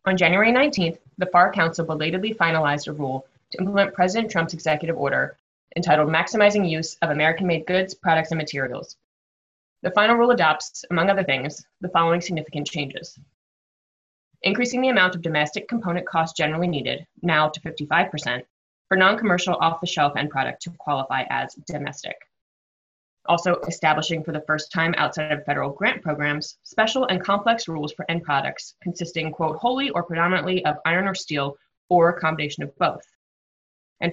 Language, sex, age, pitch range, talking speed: English, female, 20-39, 150-185 Hz, 160 wpm